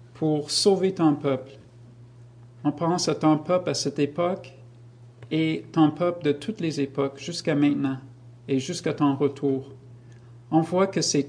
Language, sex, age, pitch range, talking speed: French, male, 50-69, 120-170 Hz, 155 wpm